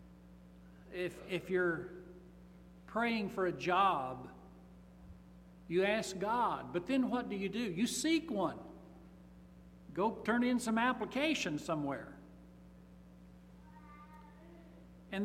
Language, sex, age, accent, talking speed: English, male, 60-79, American, 100 wpm